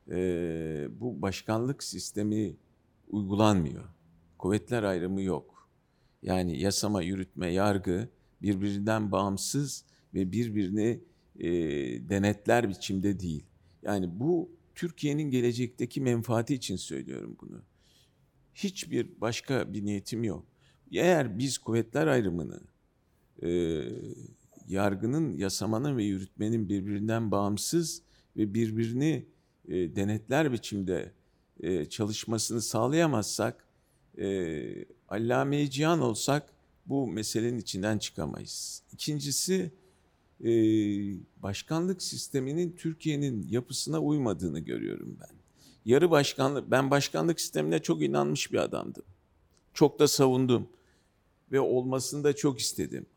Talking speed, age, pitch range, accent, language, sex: 90 wpm, 50-69, 95-145 Hz, native, Turkish, male